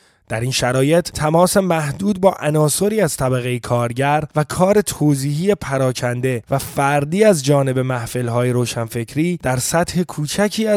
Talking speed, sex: 130 wpm, male